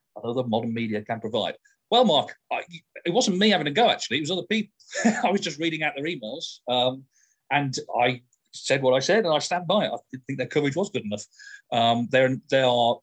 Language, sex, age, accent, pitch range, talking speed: English, male, 40-59, British, 120-145 Hz, 230 wpm